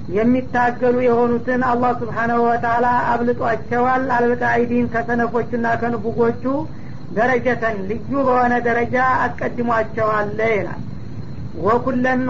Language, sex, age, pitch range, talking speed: Amharic, female, 50-69, 230-250 Hz, 85 wpm